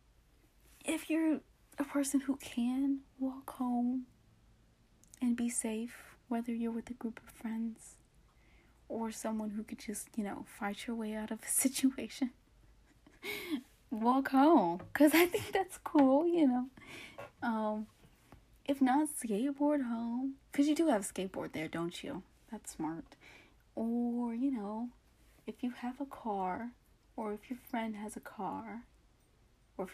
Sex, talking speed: female, 145 wpm